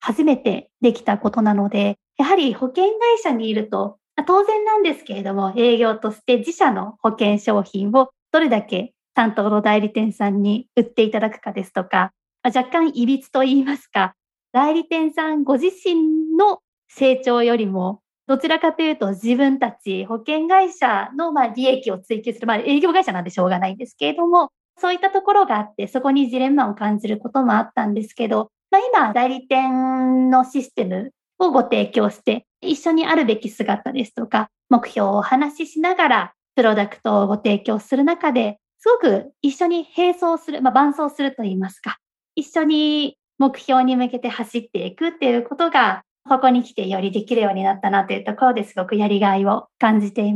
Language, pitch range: Japanese, 210-300 Hz